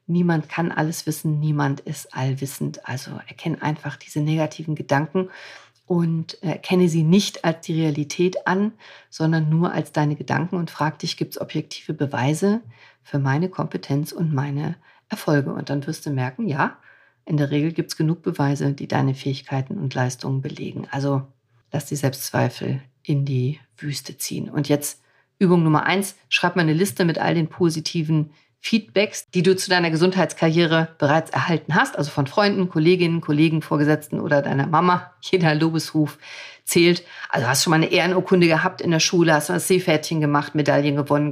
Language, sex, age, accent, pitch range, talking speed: German, female, 50-69, German, 145-175 Hz, 170 wpm